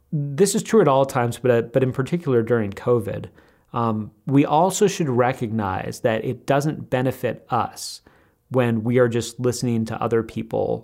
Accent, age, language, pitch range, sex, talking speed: American, 30-49, English, 110-130 Hz, male, 170 wpm